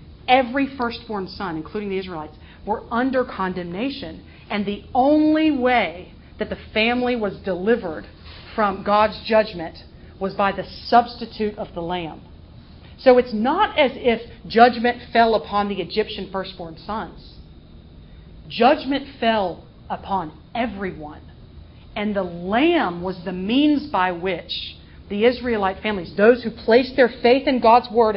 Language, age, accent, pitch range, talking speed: English, 40-59, American, 190-245 Hz, 135 wpm